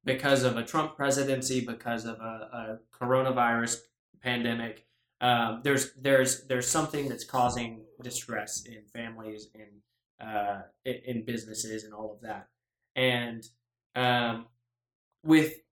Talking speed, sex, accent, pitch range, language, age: 125 wpm, male, American, 115-135 Hz, English, 10-29